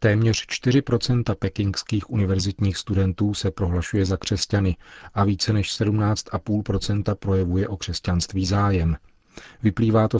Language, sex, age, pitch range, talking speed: Czech, male, 40-59, 95-105 Hz, 110 wpm